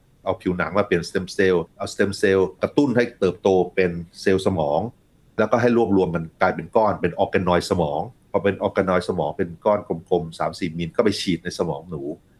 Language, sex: Thai, male